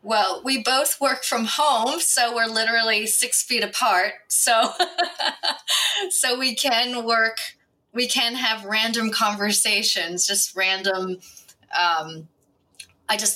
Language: English